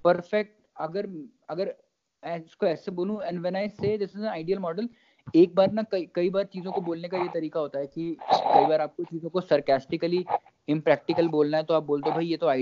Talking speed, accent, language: 50 wpm, native, Hindi